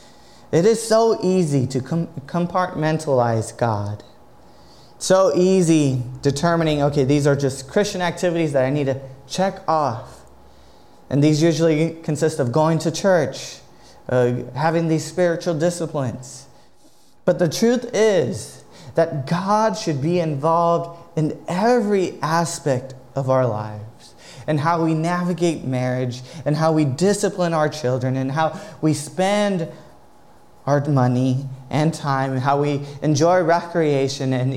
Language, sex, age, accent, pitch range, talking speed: English, male, 20-39, American, 135-170 Hz, 130 wpm